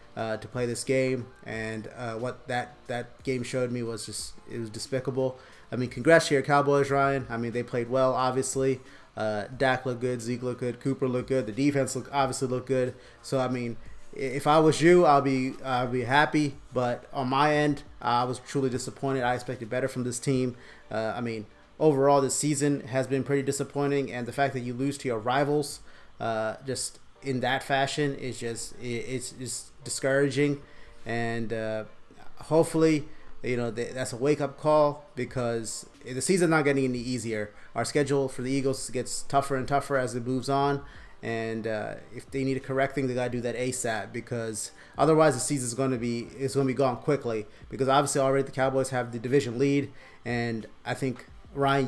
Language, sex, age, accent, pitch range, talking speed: English, male, 30-49, American, 120-140 Hz, 195 wpm